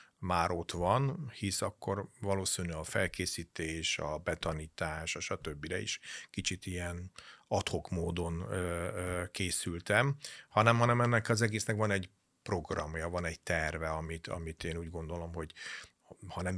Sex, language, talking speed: male, Hungarian, 135 wpm